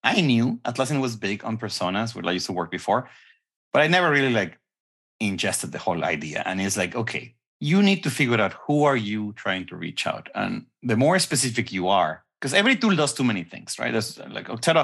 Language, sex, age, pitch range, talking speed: English, male, 30-49, 105-145 Hz, 220 wpm